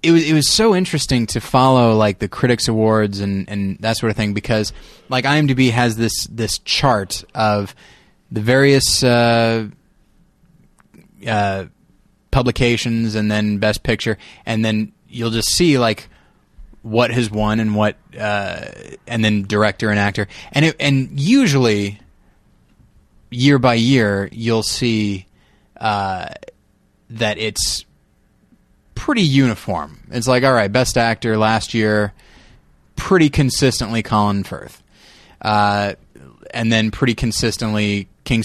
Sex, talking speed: male, 130 wpm